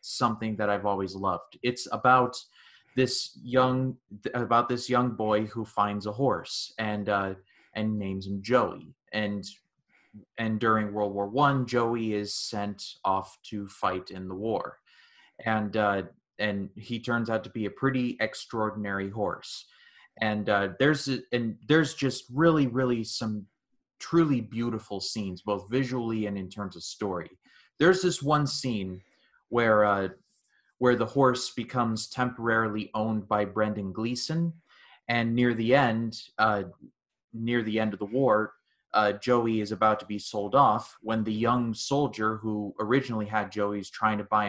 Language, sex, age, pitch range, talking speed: English, male, 30-49, 105-120 Hz, 155 wpm